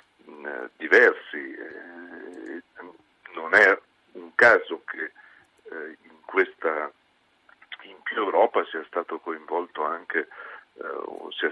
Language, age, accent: Italian, 50-69, native